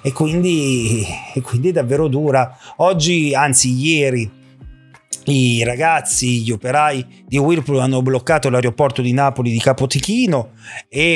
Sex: male